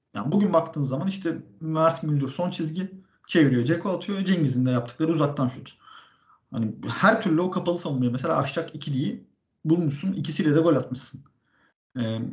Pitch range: 125-175 Hz